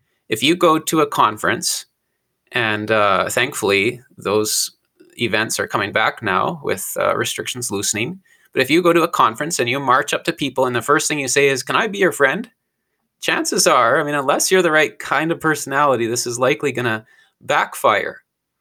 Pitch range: 120-155 Hz